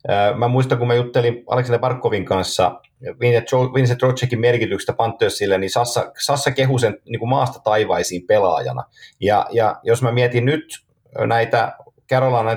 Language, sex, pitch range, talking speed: Finnish, male, 100-125 Hz, 135 wpm